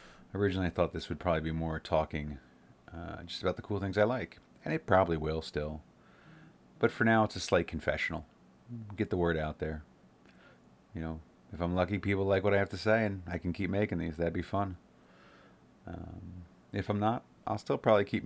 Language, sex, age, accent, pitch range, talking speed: English, male, 30-49, American, 80-95 Hz, 205 wpm